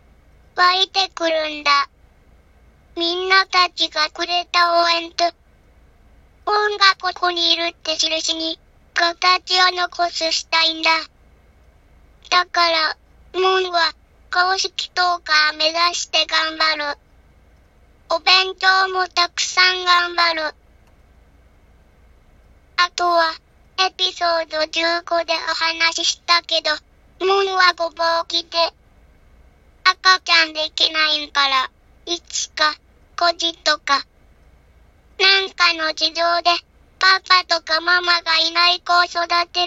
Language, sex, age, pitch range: Japanese, male, 20-39, 315-360 Hz